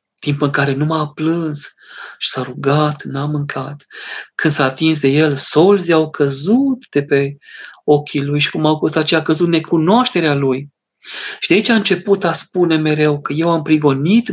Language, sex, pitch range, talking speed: Romanian, male, 140-170 Hz, 185 wpm